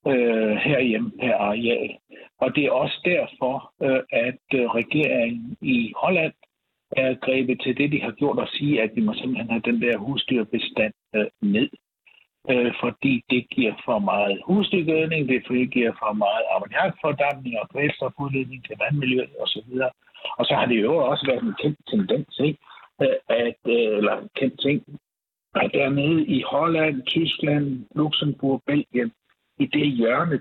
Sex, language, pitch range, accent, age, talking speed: male, Danish, 125-200 Hz, Indian, 60-79, 145 wpm